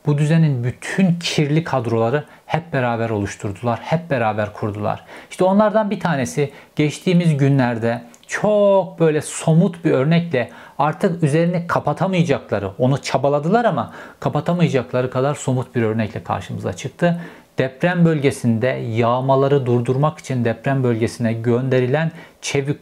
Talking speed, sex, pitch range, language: 115 wpm, male, 120-160 Hz, Turkish